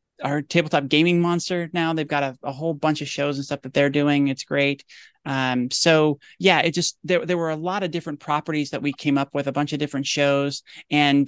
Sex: male